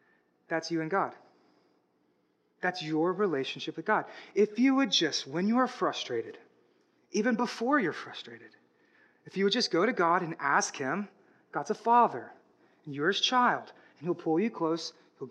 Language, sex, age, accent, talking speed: English, male, 30-49, American, 175 wpm